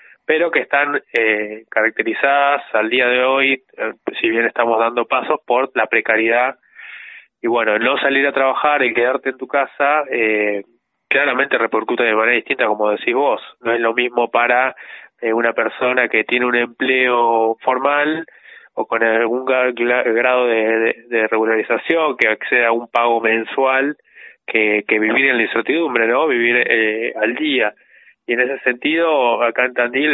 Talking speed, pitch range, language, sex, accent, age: 165 wpm, 115-130 Hz, Spanish, male, Argentinian, 20-39